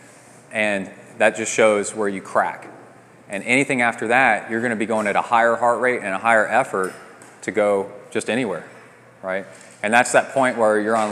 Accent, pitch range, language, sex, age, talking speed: American, 105-125 Hz, English, male, 20-39, 195 wpm